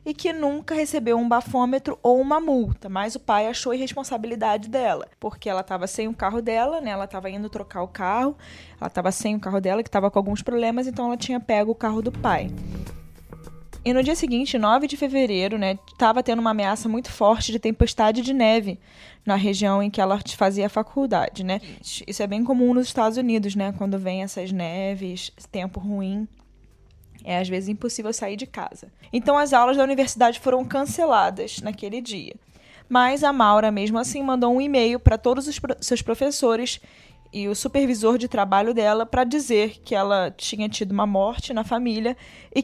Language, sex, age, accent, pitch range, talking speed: Portuguese, female, 20-39, Brazilian, 200-255 Hz, 195 wpm